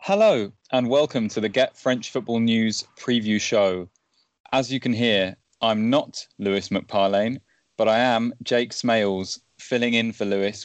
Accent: British